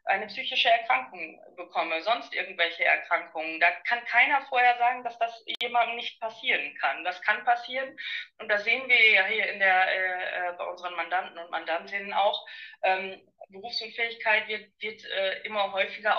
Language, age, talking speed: German, 20-39, 160 wpm